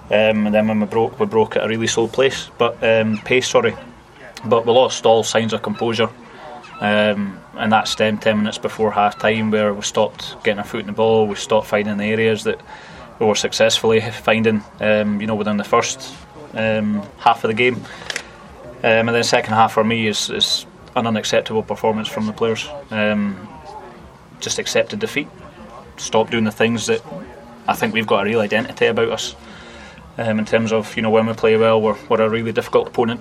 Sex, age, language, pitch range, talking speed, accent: male, 20-39, English, 105-115 Hz, 200 wpm, British